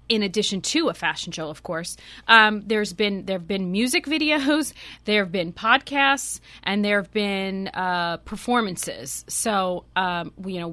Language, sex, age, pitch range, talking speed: English, female, 20-39, 180-225 Hz, 170 wpm